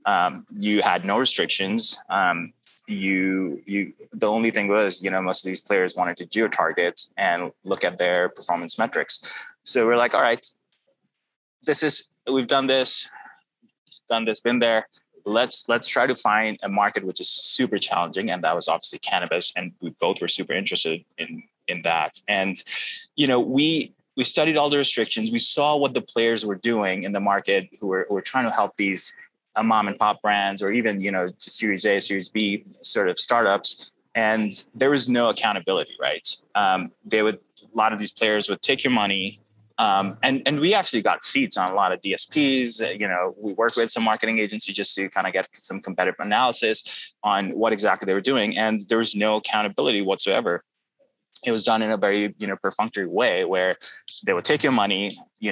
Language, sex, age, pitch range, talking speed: English, male, 20-39, 100-120 Hz, 200 wpm